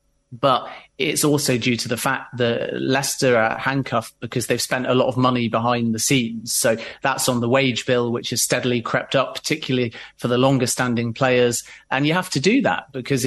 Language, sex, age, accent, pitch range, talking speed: English, male, 30-49, British, 125-140 Hz, 205 wpm